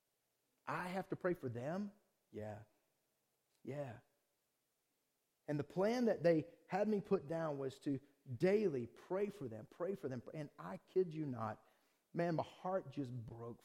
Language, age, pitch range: English, 40-59, 125-180 Hz